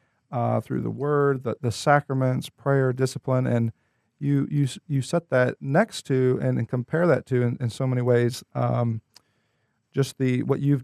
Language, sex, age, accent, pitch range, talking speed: English, male, 40-59, American, 120-140 Hz, 175 wpm